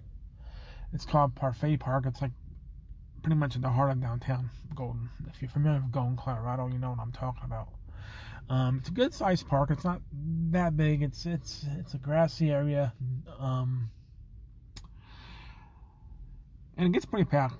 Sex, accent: male, American